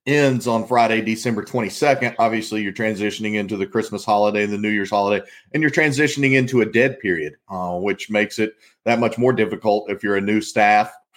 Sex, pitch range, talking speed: male, 105-125 Hz, 200 wpm